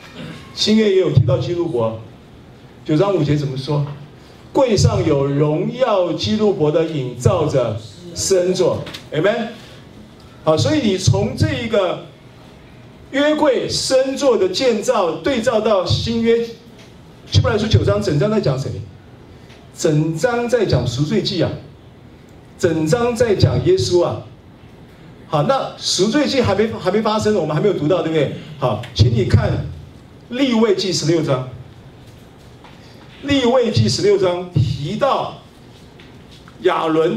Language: Chinese